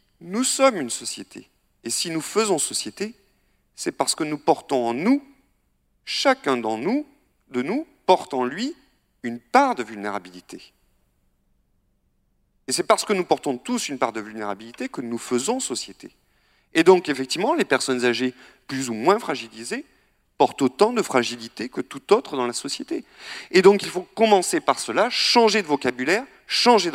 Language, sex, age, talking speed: French, male, 40-59, 160 wpm